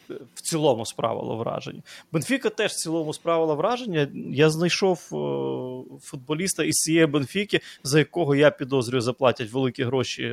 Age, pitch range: 20-39, 125-155 Hz